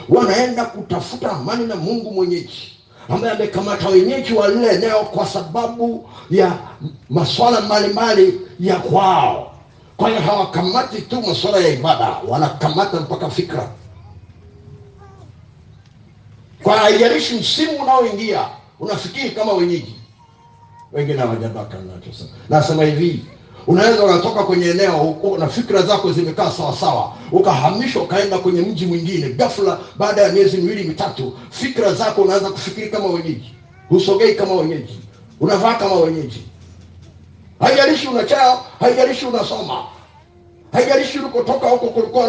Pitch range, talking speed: 150-225 Hz, 120 wpm